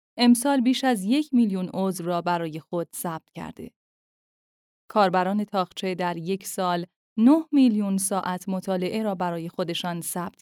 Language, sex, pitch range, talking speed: Persian, female, 175-225 Hz, 140 wpm